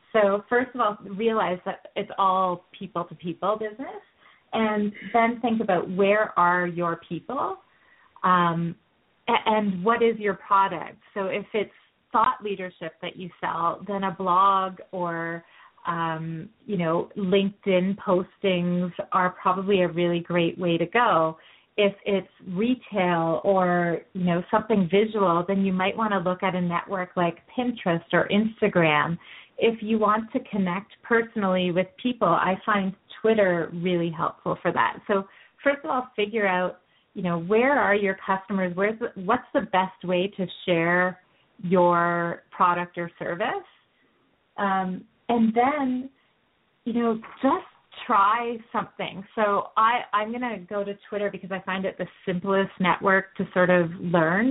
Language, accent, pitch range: English, American, 180-210 Hz